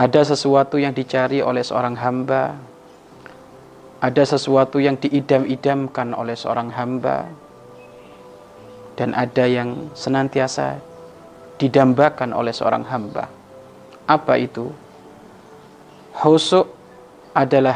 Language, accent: Indonesian, native